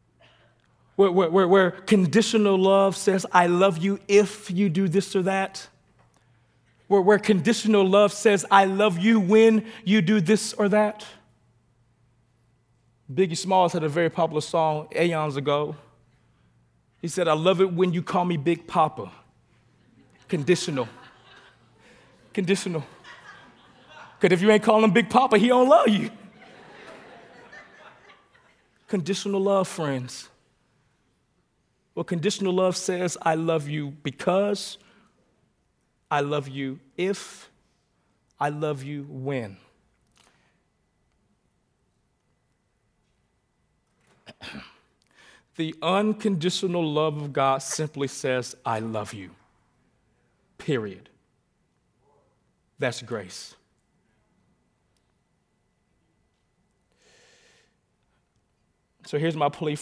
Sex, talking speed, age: male, 100 wpm, 30-49